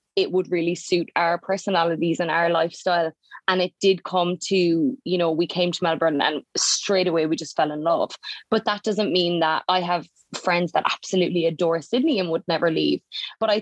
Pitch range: 165-205 Hz